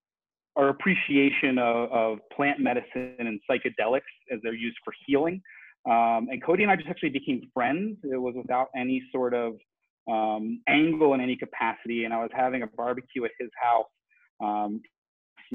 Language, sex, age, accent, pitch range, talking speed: English, male, 30-49, American, 110-130 Hz, 170 wpm